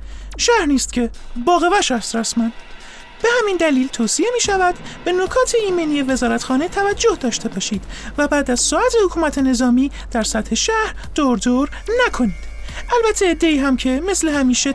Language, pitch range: Persian, 245-400 Hz